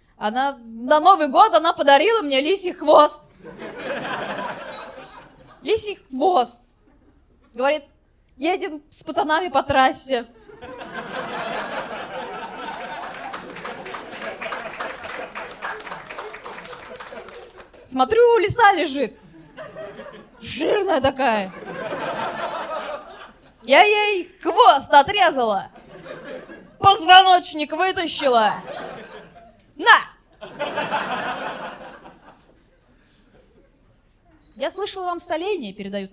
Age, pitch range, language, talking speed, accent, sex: 20-39, 220-330 Hz, Russian, 55 wpm, native, female